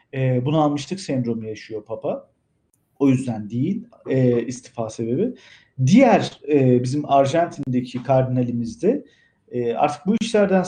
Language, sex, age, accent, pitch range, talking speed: Turkish, male, 50-69, native, 120-150 Hz, 120 wpm